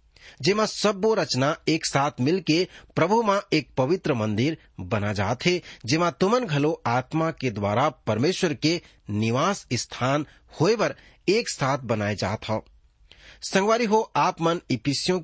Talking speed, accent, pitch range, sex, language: 140 wpm, Indian, 105-160 Hz, male, English